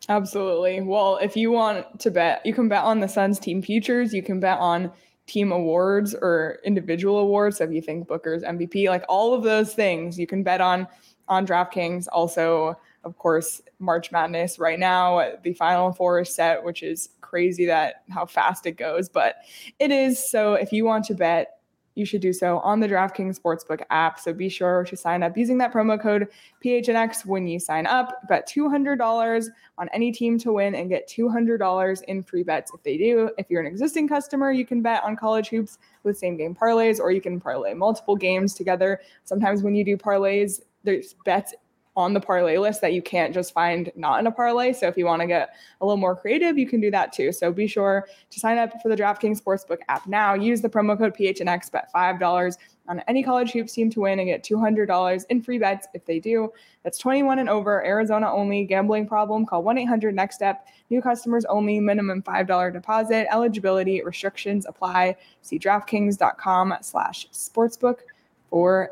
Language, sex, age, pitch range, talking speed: English, female, 20-39, 180-225 Hz, 195 wpm